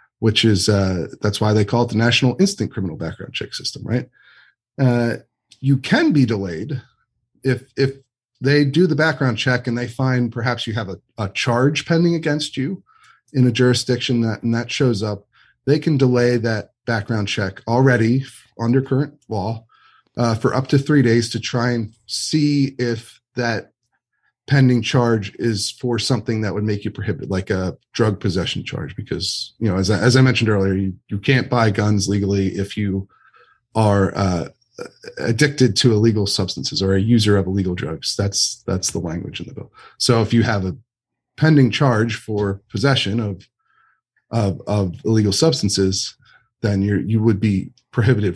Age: 30-49